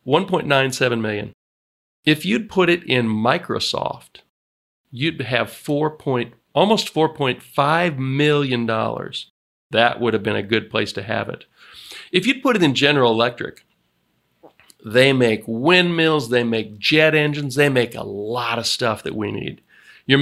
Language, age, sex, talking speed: English, 40-59, male, 145 wpm